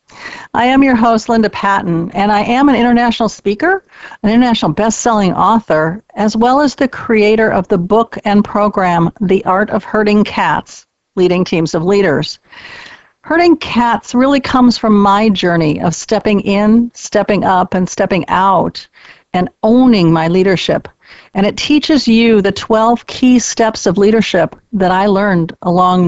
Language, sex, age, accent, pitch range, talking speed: English, female, 50-69, American, 185-240 Hz, 155 wpm